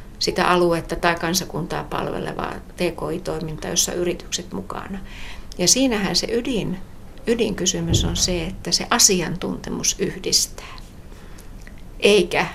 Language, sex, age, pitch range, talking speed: Finnish, female, 60-79, 165-185 Hz, 100 wpm